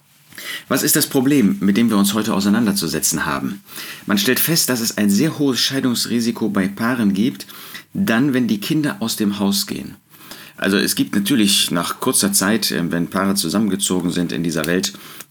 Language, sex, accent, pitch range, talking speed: German, male, German, 95-125 Hz, 175 wpm